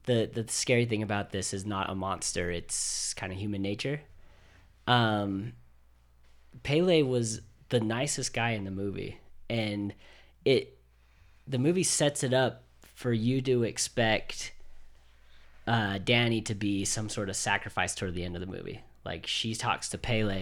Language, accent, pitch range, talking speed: English, American, 95-125 Hz, 160 wpm